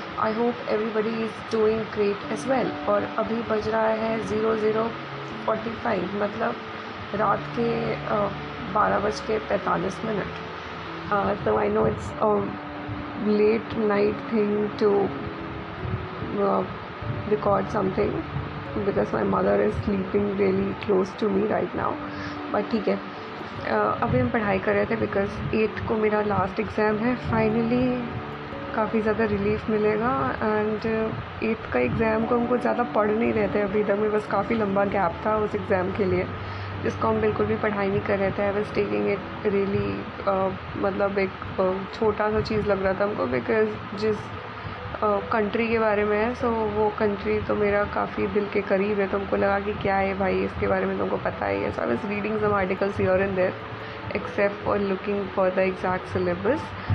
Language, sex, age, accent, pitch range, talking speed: Hindi, female, 20-39, native, 195-215 Hz, 165 wpm